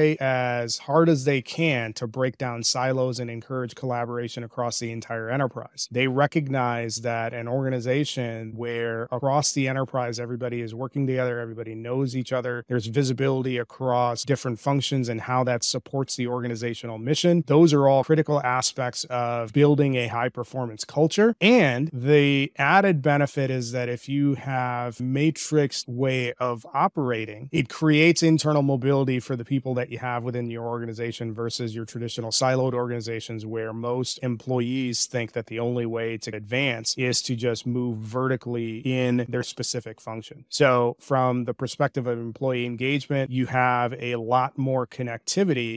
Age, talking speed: 30-49, 155 wpm